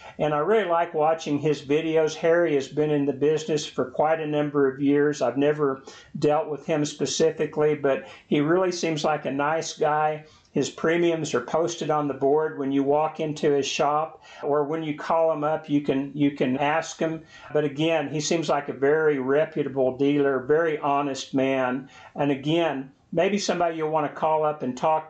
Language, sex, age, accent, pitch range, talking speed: English, male, 60-79, American, 140-160 Hz, 195 wpm